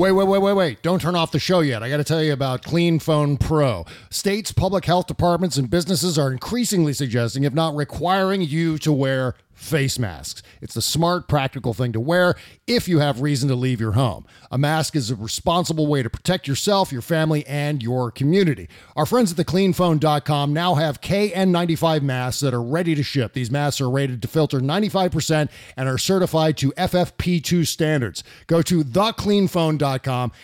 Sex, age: male, 40-59